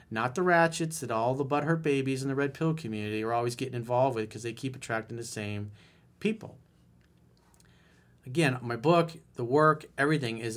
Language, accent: English, American